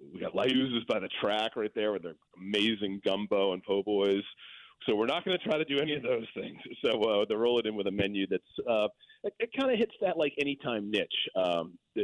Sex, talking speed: male, 230 wpm